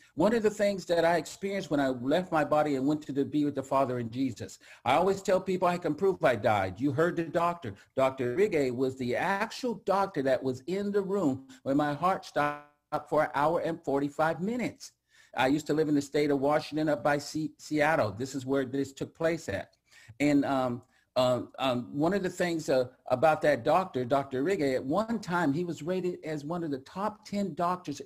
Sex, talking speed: male, 215 wpm